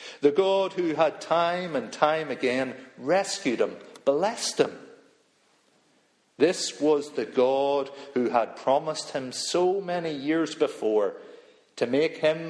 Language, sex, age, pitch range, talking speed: English, male, 50-69, 140-225 Hz, 130 wpm